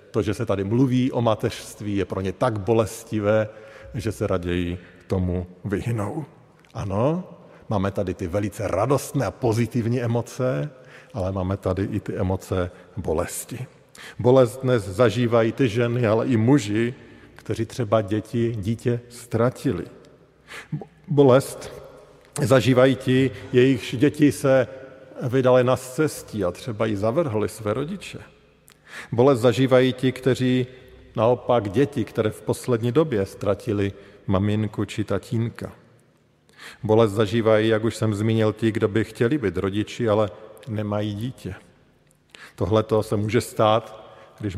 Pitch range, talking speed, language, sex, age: 105-130 Hz, 130 wpm, Slovak, male, 50-69